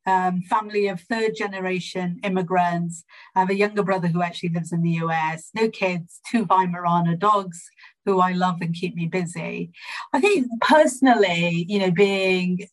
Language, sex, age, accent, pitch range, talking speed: English, female, 40-59, British, 180-215 Hz, 160 wpm